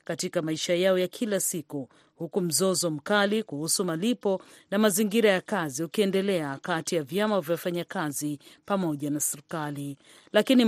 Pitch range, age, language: 155-200 Hz, 40-59, Swahili